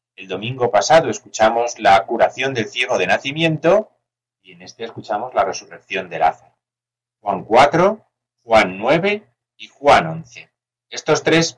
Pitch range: 105-125 Hz